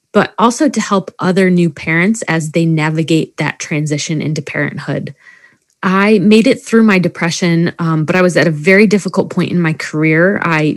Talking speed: 185 wpm